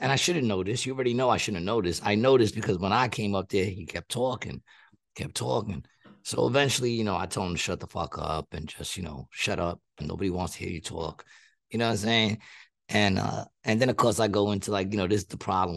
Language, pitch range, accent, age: English, 95-115 Hz, American, 30-49